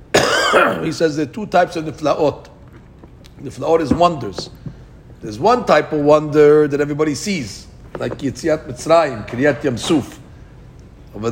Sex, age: male, 50-69